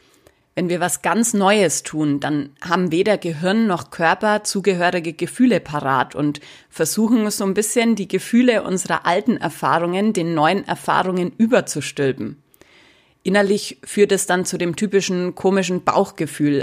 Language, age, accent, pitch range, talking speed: German, 20-39, German, 155-195 Hz, 135 wpm